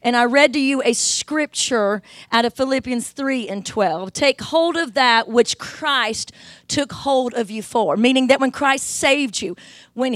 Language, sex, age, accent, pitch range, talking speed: English, female, 40-59, American, 225-285 Hz, 185 wpm